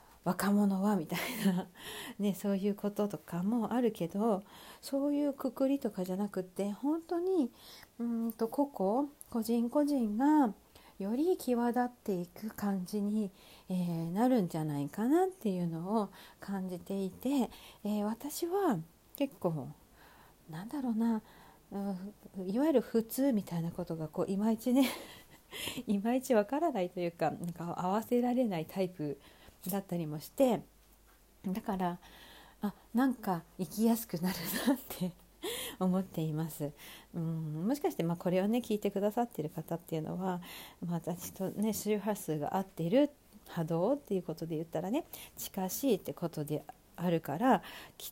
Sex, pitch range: female, 180-245 Hz